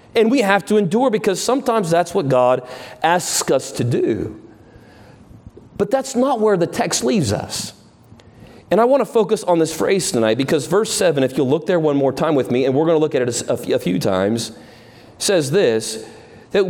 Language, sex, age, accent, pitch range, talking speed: English, male, 40-59, American, 135-200 Hz, 210 wpm